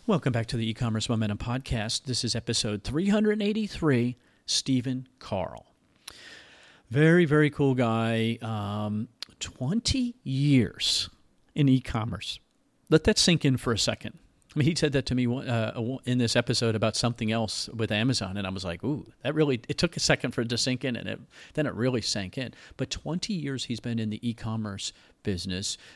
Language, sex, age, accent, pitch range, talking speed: English, male, 40-59, American, 105-135 Hz, 175 wpm